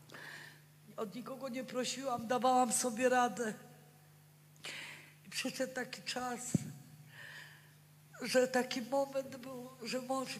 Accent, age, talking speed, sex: native, 50-69, 90 wpm, female